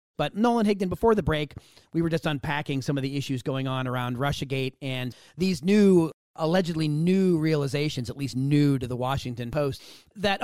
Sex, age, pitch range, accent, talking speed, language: male, 40-59, 130-165 Hz, American, 185 wpm, English